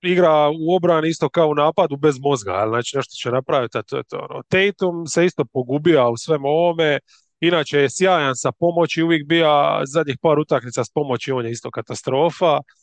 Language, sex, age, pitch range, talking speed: English, male, 30-49, 145-195 Hz, 175 wpm